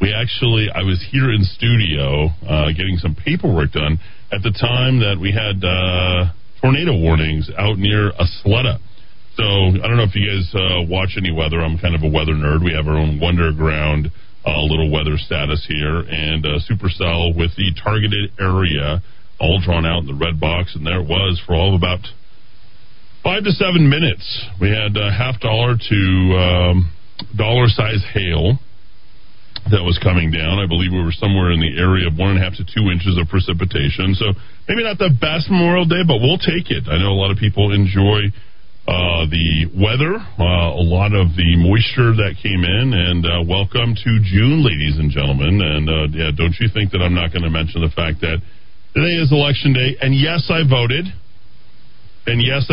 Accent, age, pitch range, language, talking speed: American, 40-59, 85-115 Hz, English, 195 wpm